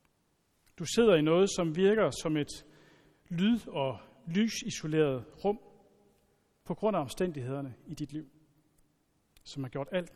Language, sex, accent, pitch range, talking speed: Danish, male, native, 140-180 Hz, 135 wpm